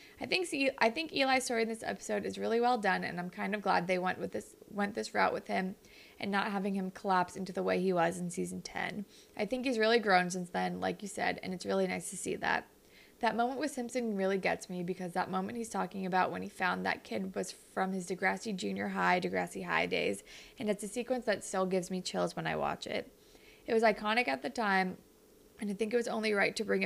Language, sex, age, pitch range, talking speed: English, female, 20-39, 185-225 Hz, 250 wpm